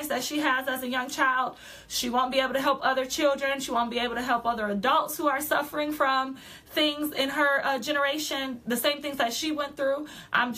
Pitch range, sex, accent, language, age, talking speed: 240-295 Hz, female, American, English, 20-39, 225 wpm